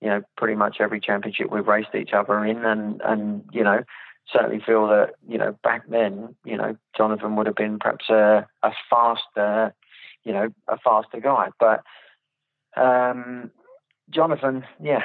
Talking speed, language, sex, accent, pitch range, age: 165 wpm, English, male, British, 100-110 Hz, 30-49